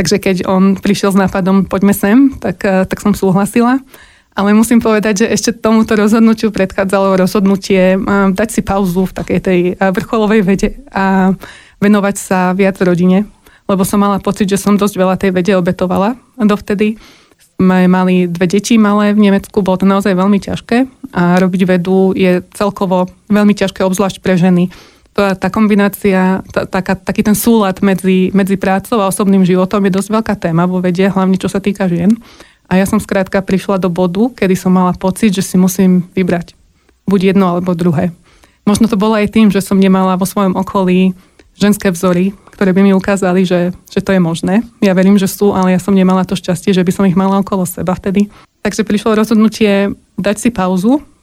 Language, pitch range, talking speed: Slovak, 185-210 Hz, 185 wpm